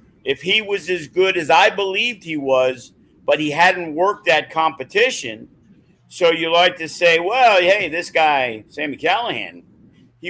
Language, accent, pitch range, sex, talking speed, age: English, American, 135-175 Hz, male, 165 wpm, 50-69